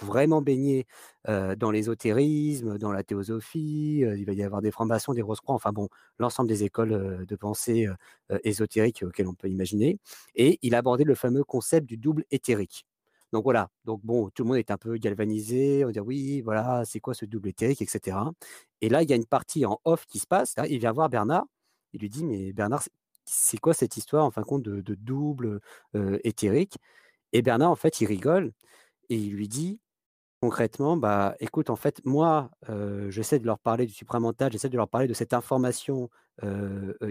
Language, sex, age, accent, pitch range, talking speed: French, male, 40-59, French, 110-140 Hz, 205 wpm